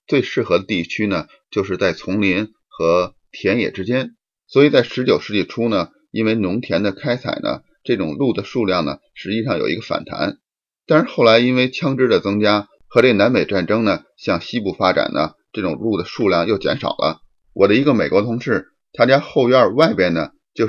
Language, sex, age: Chinese, male, 30-49